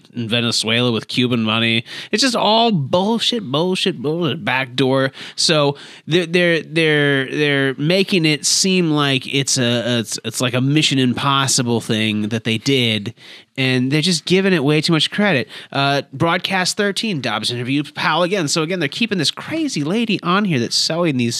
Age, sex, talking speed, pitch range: 30-49, male, 175 wpm, 125-180 Hz